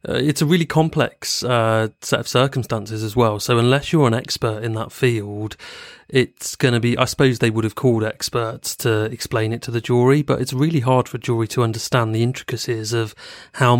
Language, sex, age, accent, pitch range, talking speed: English, male, 30-49, British, 115-135 Hz, 215 wpm